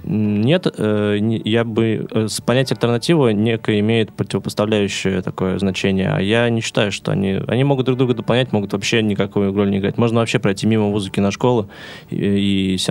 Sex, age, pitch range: male, 20-39, 100-120 Hz